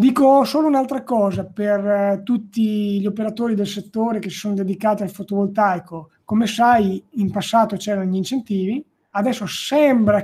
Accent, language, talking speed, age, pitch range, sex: native, Italian, 145 wpm, 20-39, 195-230 Hz, male